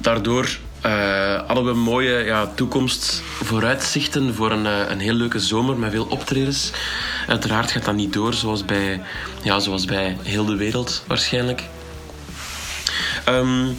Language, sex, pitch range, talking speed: English, male, 105-130 Hz, 145 wpm